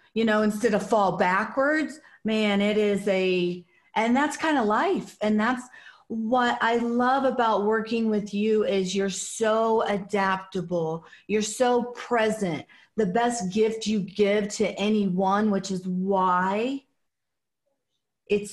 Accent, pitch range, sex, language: American, 180-220 Hz, female, English